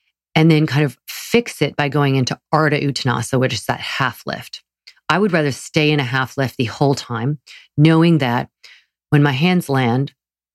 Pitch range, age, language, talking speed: 125-155 Hz, 40-59, English, 190 wpm